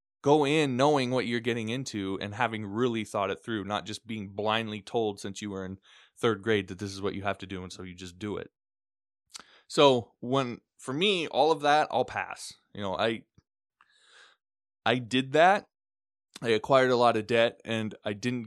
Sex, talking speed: male, 200 wpm